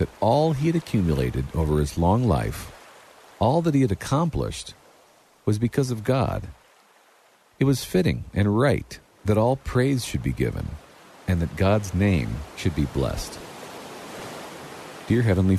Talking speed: 145 wpm